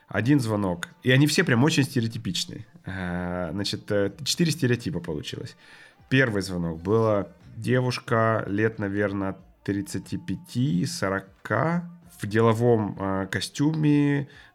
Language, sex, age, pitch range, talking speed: Ukrainian, male, 30-49, 100-125 Hz, 90 wpm